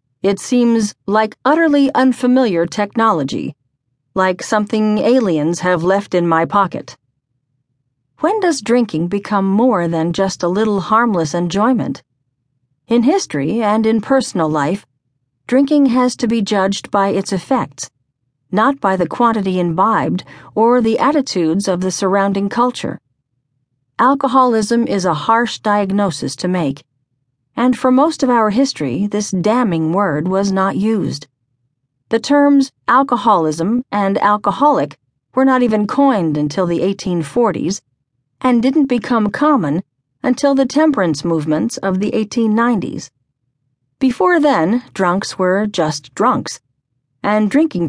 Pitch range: 155-240 Hz